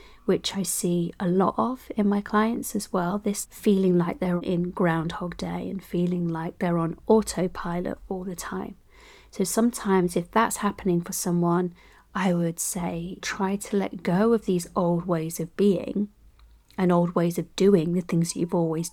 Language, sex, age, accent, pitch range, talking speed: English, female, 30-49, British, 175-210 Hz, 180 wpm